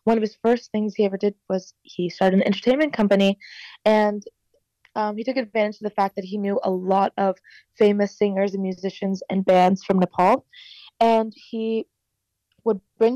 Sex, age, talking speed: female, 20-39, 185 wpm